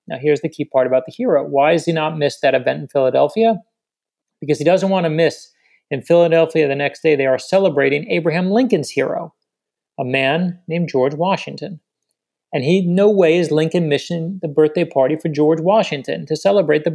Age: 30-49